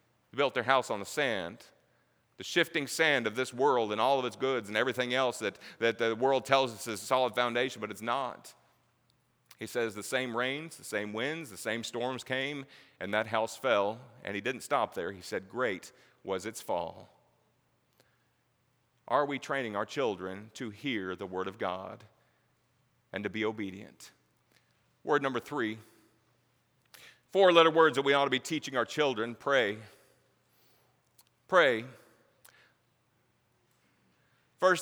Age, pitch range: 40-59, 115-135 Hz